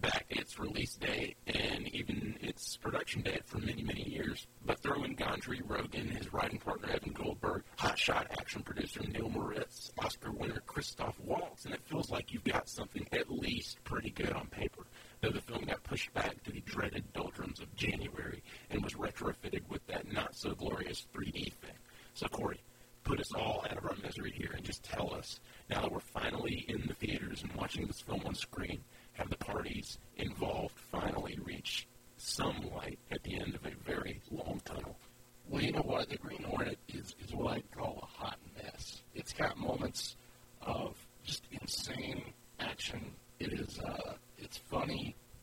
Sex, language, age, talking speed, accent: male, English, 50-69, 175 wpm, American